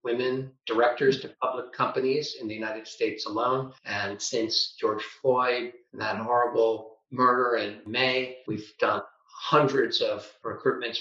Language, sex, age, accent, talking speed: English, male, 50-69, American, 135 wpm